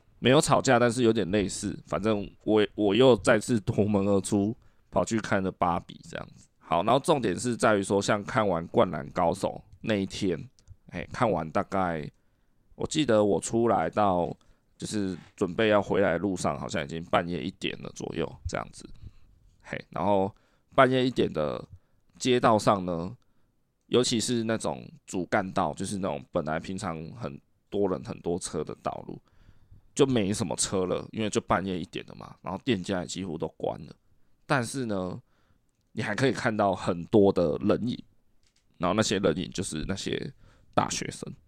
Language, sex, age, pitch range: Chinese, male, 20-39, 95-115 Hz